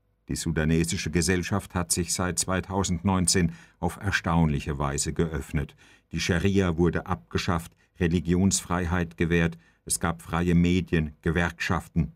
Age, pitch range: 50-69, 80-90 Hz